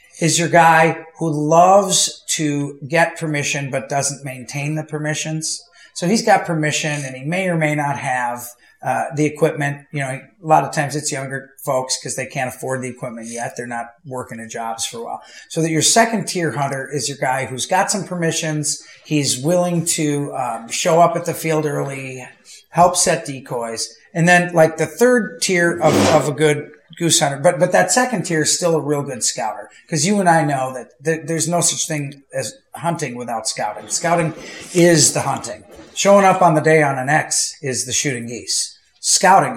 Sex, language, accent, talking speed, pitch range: male, English, American, 200 wpm, 140-170 Hz